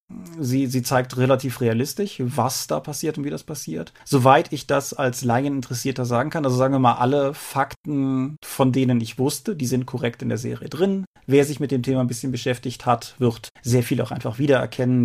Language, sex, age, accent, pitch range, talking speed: German, male, 30-49, German, 115-135 Hz, 205 wpm